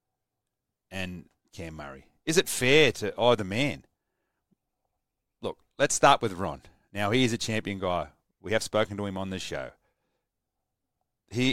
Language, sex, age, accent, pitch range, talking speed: English, male, 30-49, Australian, 95-130 Hz, 150 wpm